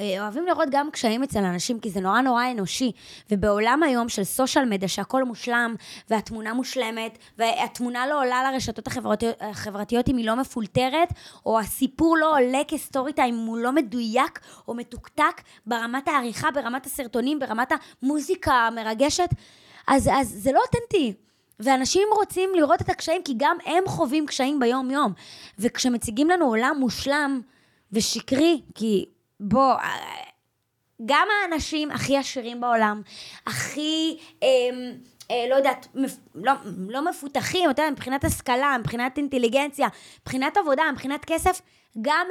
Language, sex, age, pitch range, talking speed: Hebrew, female, 20-39, 225-295 Hz, 135 wpm